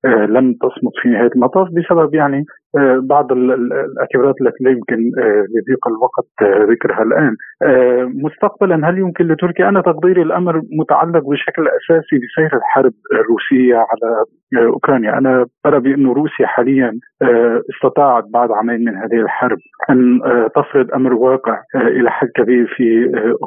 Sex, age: male, 50-69